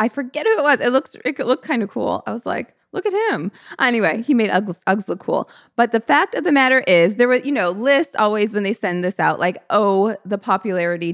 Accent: American